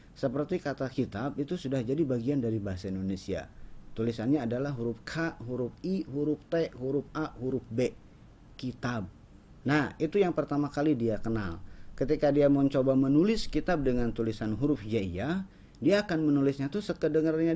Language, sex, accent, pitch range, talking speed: Indonesian, male, native, 110-150 Hz, 150 wpm